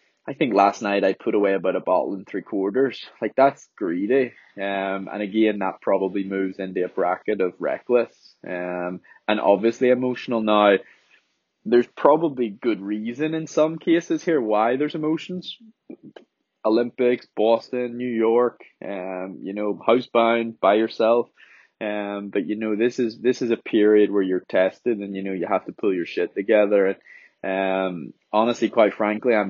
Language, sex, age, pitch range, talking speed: English, male, 20-39, 100-125 Hz, 165 wpm